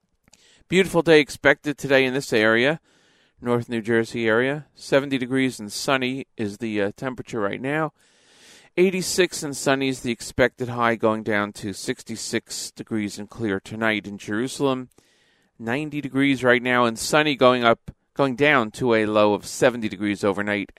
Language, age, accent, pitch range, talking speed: English, 40-59, American, 105-135 Hz, 160 wpm